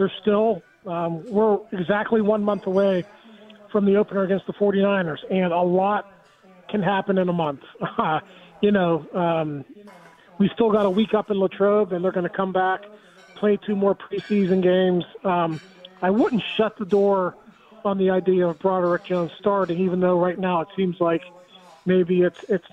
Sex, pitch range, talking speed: male, 180-210 Hz, 180 wpm